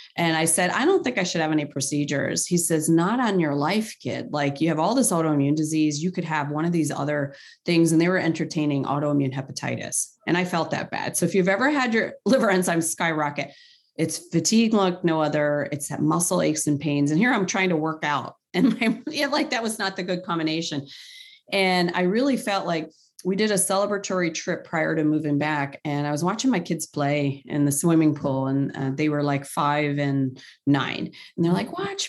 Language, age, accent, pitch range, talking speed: English, 30-49, American, 145-190 Hz, 225 wpm